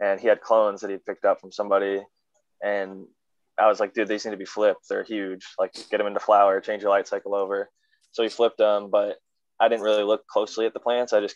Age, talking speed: 20-39, 255 wpm